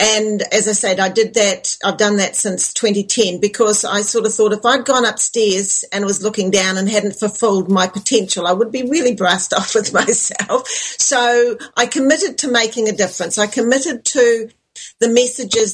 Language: English